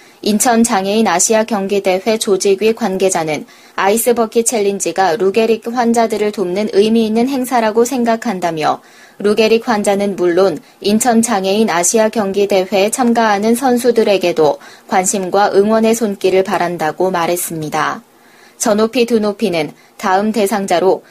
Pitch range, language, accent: 190-230 Hz, Korean, native